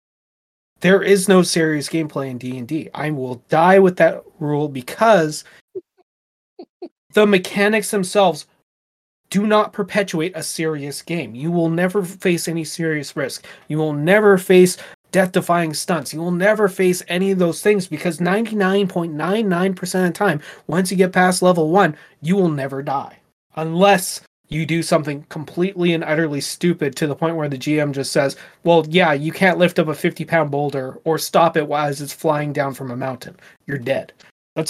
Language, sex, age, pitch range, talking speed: English, male, 30-49, 145-185 Hz, 170 wpm